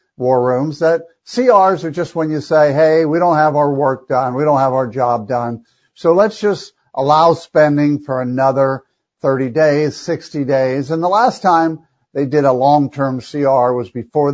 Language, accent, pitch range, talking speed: English, American, 130-170 Hz, 190 wpm